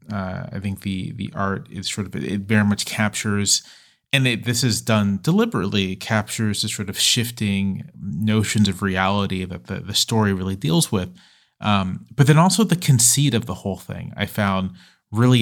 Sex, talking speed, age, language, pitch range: male, 185 wpm, 30-49, English, 100-115 Hz